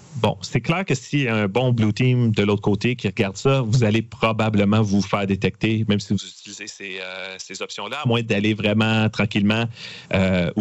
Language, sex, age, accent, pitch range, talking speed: French, male, 40-59, Canadian, 100-125 Hz, 200 wpm